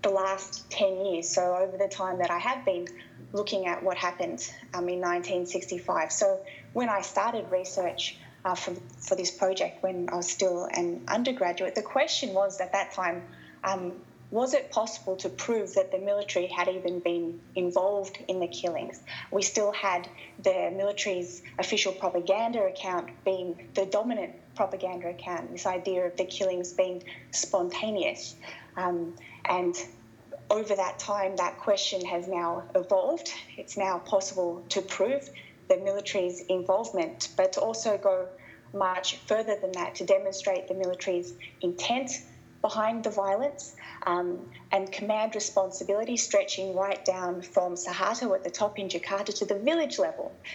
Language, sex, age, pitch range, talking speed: English, female, 20-39, 180-205 Hz, 155 wpm